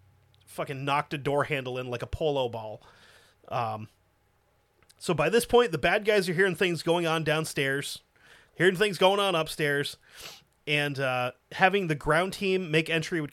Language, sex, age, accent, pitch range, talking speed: English, male, 30-49, American, 145-180 Hz, 170 wpm